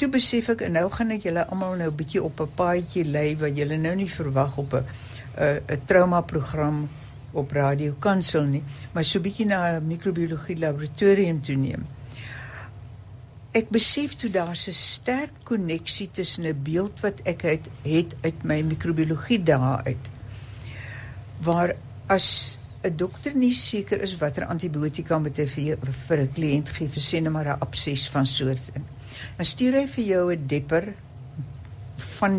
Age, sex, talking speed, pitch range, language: 60-79, female, 160 wpm, 130-175 Hz, English